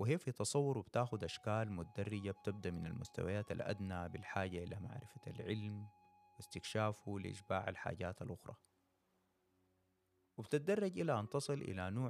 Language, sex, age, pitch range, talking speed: Arabic, male, 30-49, 95-120 Hz, 120 wpm